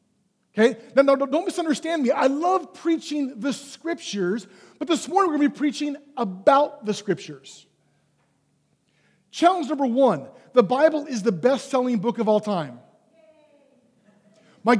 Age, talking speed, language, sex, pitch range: 40-59, 140 wpm, English, male, 205-275 Hz